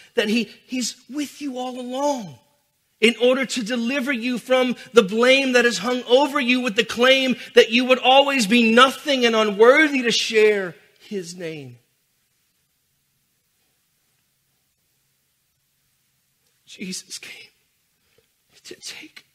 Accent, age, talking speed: American, 40-59, 120 wpm